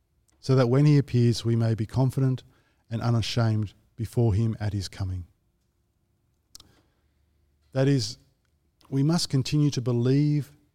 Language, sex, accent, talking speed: English, male, Australian, 130 wpm